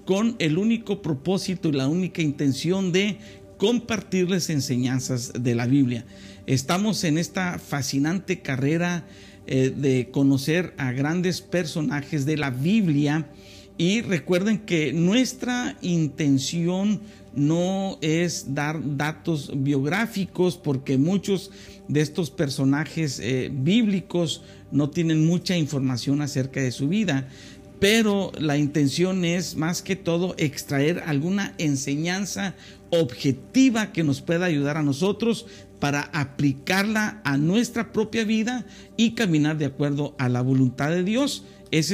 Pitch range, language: 135-185 Hz, Spanish